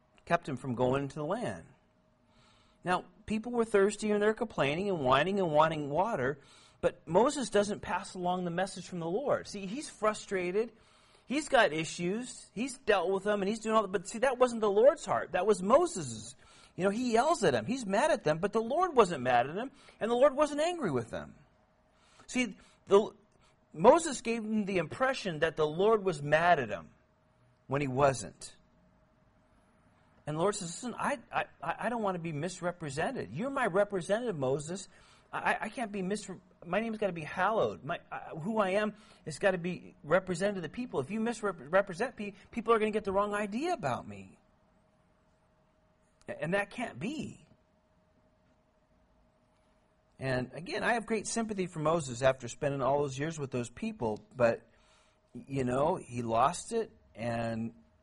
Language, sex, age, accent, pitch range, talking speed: Finnish, male, 40-59, American, 150-220 Hz, 185 wpm